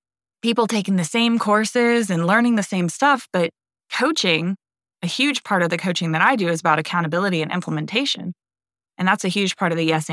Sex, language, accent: female, English, American